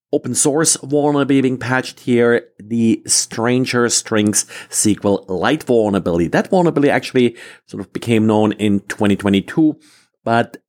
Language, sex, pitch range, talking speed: English, male, 105-140 Hz, 125 wpm